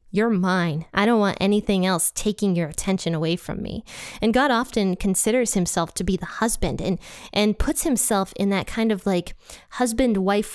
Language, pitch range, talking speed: English, 180-220 Hz, 180 wpm